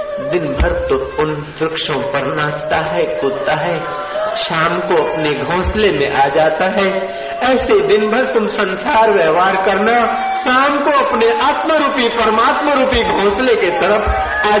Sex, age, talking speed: male, 50-69, 150 wpm